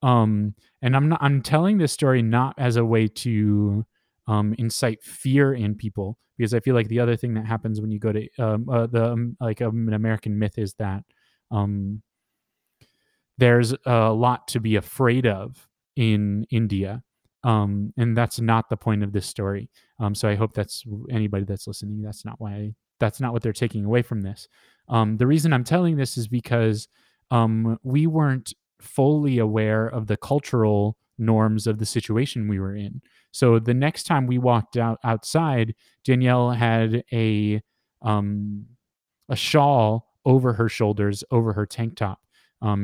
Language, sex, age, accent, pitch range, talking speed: English, male, 20-39, American, 105-120 Hz, 175 wpm